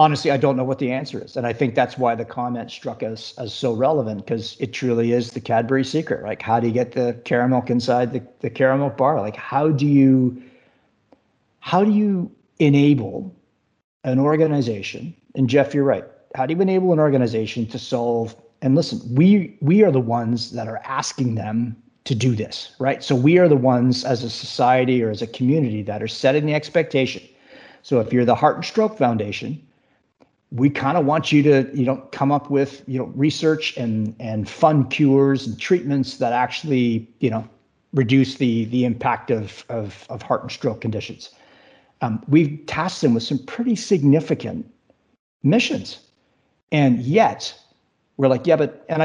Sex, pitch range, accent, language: male, 120-145 Hz, American, English